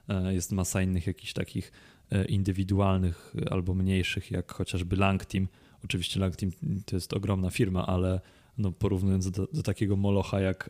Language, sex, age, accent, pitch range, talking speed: Polish, male, 20-39, native, 95-105 Hz, 140 wpm